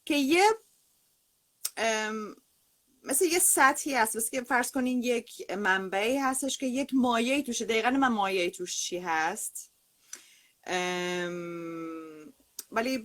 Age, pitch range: 30-49, 180-260 Hz